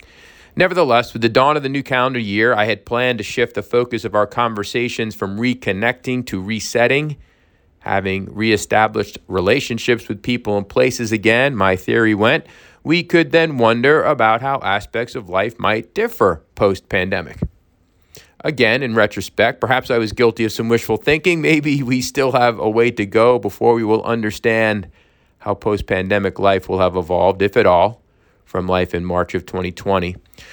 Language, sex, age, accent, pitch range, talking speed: English, male, 40-59, American, 100-125 Hz, 165 wpm